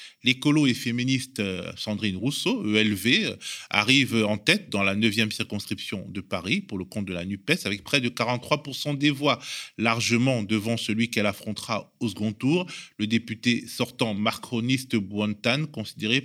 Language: French